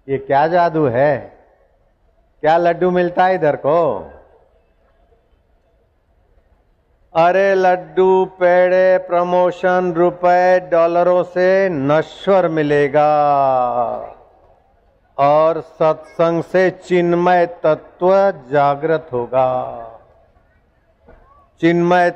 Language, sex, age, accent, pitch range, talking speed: Hindi, male, 50-69, native, 135-165 Hz, 75 wpm